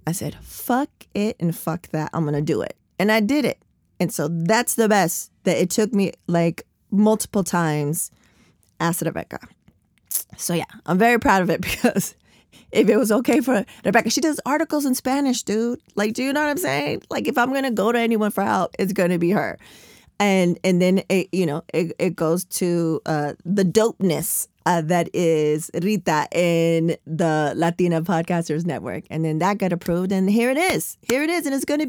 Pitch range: 170-235 Hz